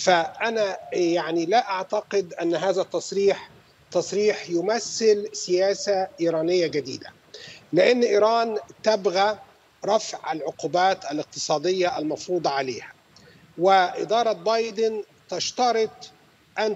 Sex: male